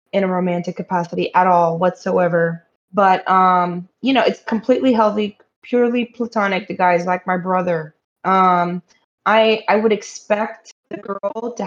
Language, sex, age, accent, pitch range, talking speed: English, female, 20-39, American, 180-210 Hz, 150 wpm